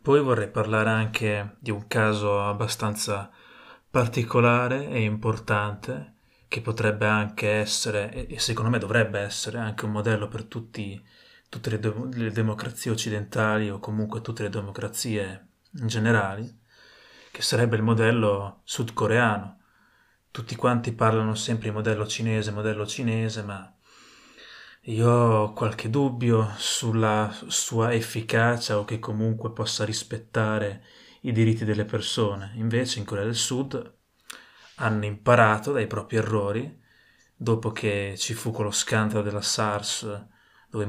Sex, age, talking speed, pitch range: male, 20-39, 125 wpm, 105-115 Hz